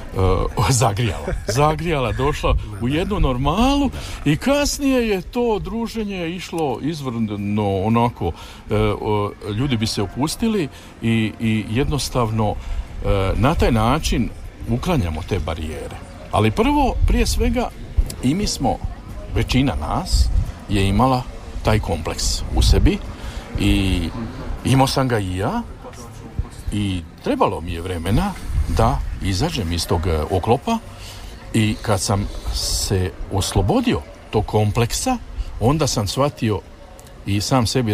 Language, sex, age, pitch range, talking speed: Croatian, male, 50-69, 90-120 Hz, 110 wpm